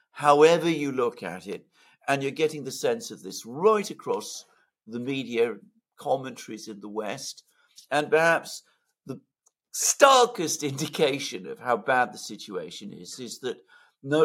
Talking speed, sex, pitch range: 145 wpm, male, 115-165 Hz